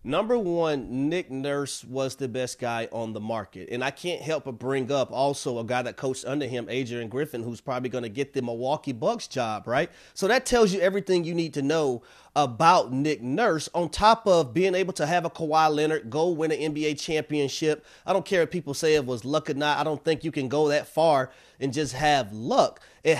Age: 30-49